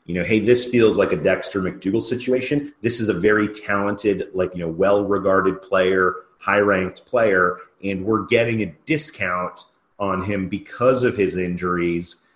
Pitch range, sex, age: 95-110 Hz, male, 30-49